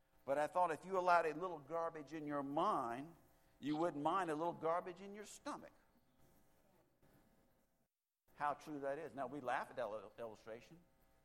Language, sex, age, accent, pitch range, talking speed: English, male, 60-79, American, 130-165 Hz, 170 wpm